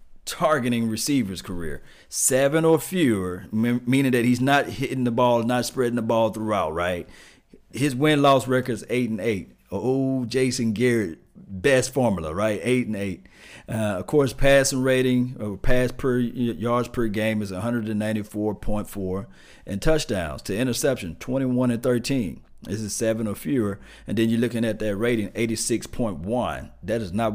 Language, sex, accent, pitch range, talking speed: English, male, American, 105-130 Hz, 160 wpm